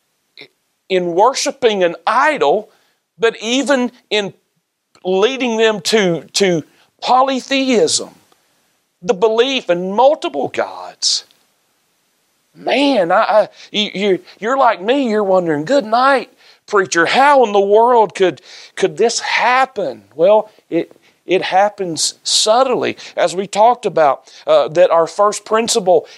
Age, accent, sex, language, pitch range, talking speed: 40-59, American, male, English, 165-250 Hz, 115 wpm